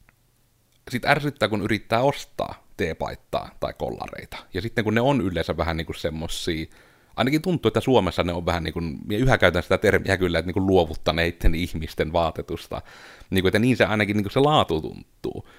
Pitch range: 95-120 Hz